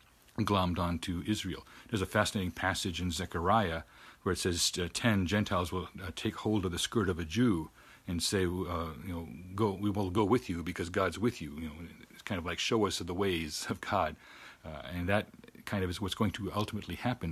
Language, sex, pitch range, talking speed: English, male, 85-105 Hz, 220 wpm